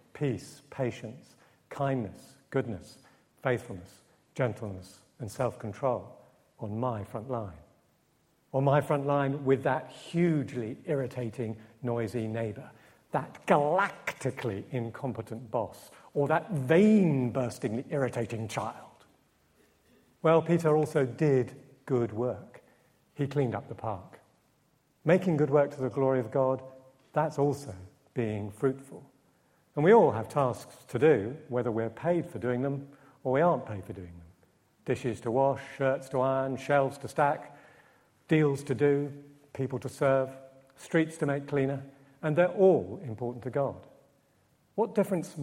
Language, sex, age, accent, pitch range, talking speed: English, male, 50-69, British, 120-150 Hz, 135 wpm